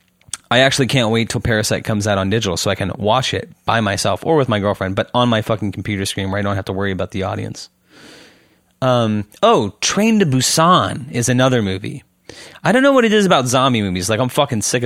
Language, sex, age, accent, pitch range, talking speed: English, male, 30-49, American, 105-135 Hz, 230 wpm